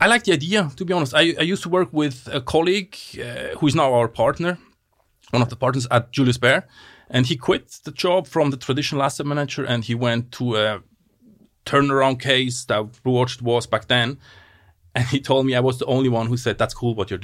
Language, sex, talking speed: English, male, 230 wpm